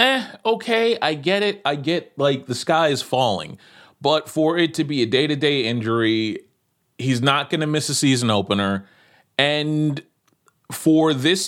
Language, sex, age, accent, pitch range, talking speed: English, male, 30-49, American, 125-175 Hz, 150 wpm